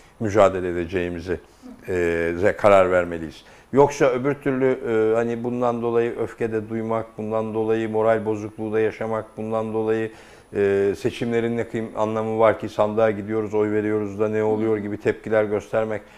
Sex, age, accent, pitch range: male, 60-79, native, 90-115 Hz